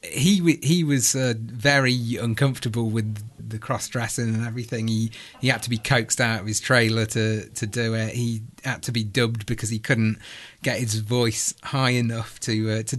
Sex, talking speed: male, 195 wpm